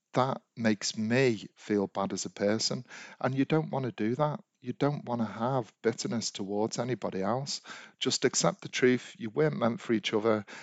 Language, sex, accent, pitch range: English, male, British, 100-130 Hz